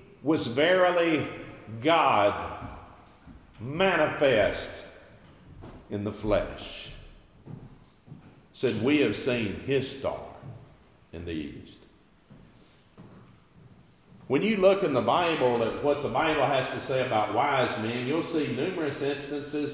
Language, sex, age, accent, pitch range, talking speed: English, male, 50-69, American, 115-150 Hz, 110 wpm